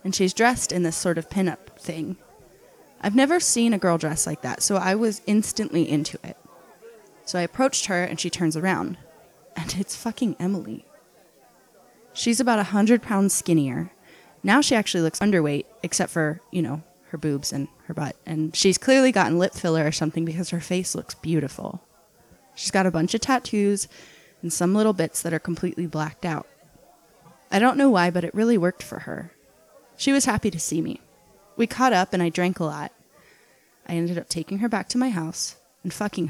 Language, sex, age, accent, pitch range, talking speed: English, female, 20-39, American, 165-215 Hz, 195 wpm